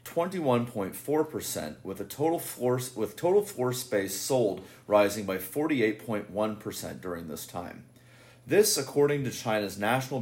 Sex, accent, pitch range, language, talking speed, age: male, American, 100-130 Hz, English, 135 wpm, 30-49